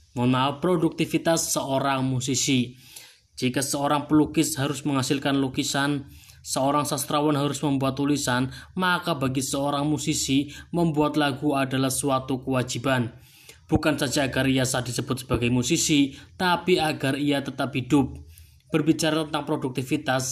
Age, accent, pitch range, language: 20-39, native, 130-155 Hz, Indonesian